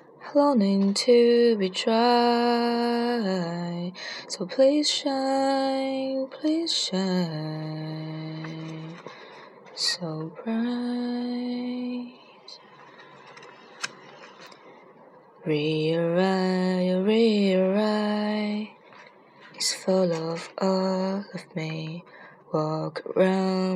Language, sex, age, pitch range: Chinese, female, 20-39, 185-270 Hz